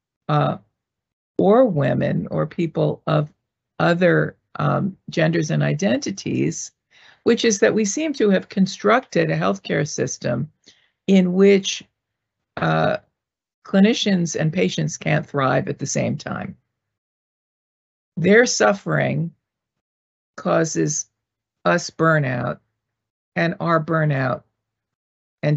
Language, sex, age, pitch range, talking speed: English, female, 50-69, 130-175 Hz, 100 wpm